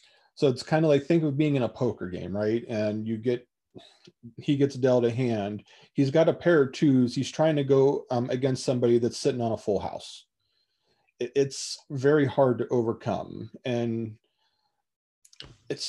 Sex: male